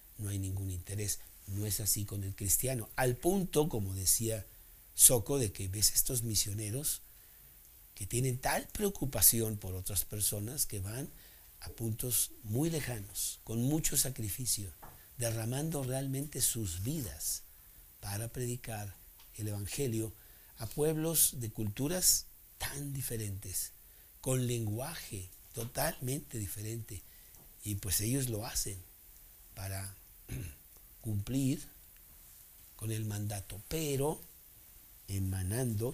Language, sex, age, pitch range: Spanish, male, 60-79, 95-125 Hz